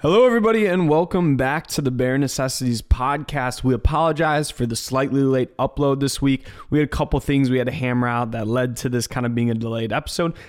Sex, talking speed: male, 225 wpm